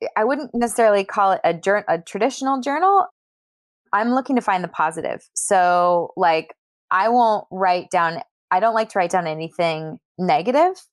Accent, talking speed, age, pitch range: American, 165 wpm, 20-39, 160-200 Hz